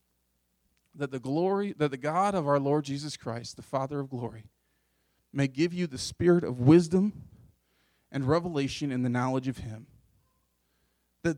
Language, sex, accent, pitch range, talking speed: English, male, American, 120-190 Hz, 160 wpm